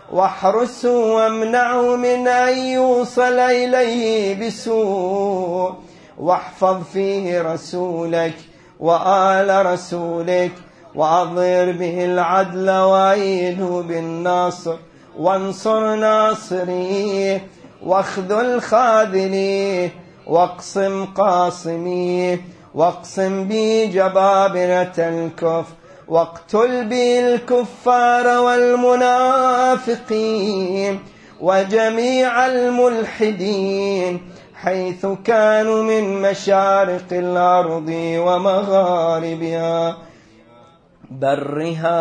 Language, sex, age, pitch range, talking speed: Arabic, male, 30-49, 175-215 Hz, 55 wpm